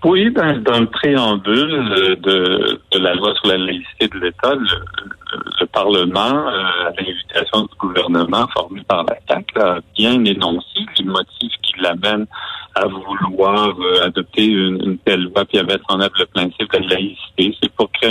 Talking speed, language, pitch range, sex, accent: 180 wpm, French, 95-125 Hz, male, French